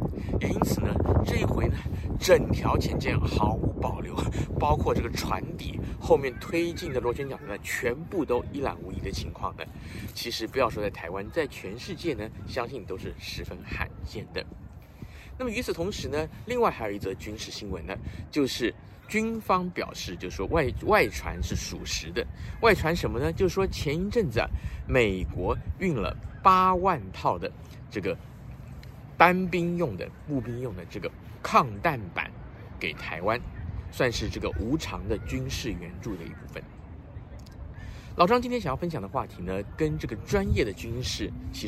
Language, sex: Chinese, male